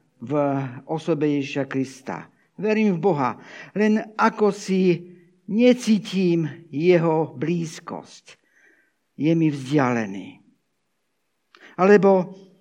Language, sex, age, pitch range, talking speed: Slovak, male, 60-79, 155-215 Hz, 80 wpm